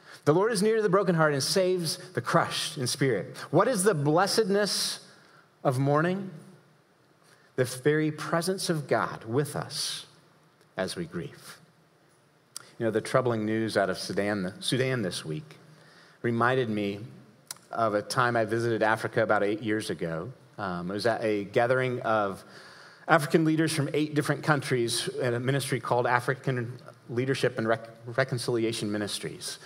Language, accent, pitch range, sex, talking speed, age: English, American, 115-155 Hz, male, 155 wpm, 40-59